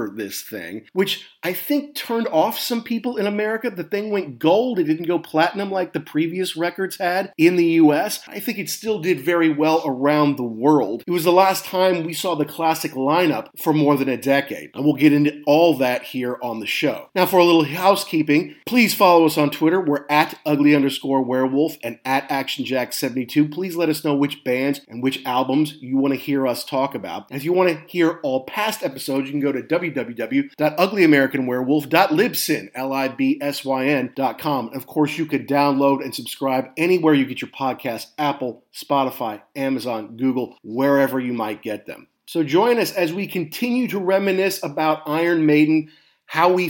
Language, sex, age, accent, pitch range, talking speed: English, male, 30-49, American, 140-180 Hz, 185 wpm